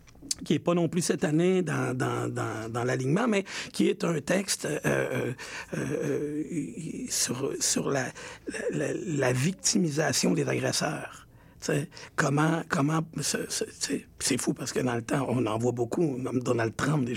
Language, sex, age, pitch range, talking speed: French, male, 60-79, 130-165 Hz, 165 wpm